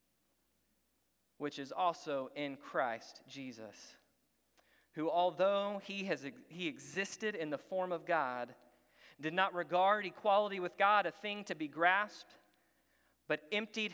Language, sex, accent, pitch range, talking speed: English, male, American, 170-210 Hz, 130 wpm